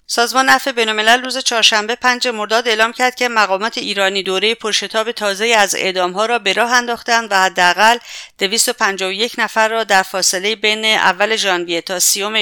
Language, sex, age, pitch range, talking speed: English, female, 50-69, 180-220 Hz, 165 wpm